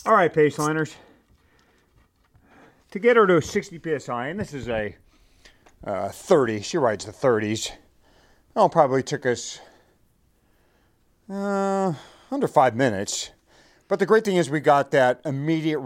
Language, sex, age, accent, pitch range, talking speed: English, male, 40-59, American, 120-160 Hz, 145 wpm